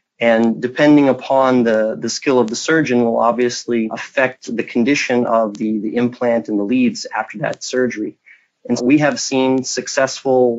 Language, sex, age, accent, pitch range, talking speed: English, male, 30-49, American, 115-130 Hz, 165 wpm